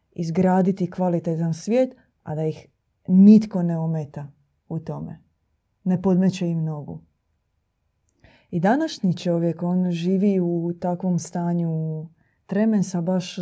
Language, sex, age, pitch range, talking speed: Croatian, female, 20-39, 160-185 Hz, 110 wpm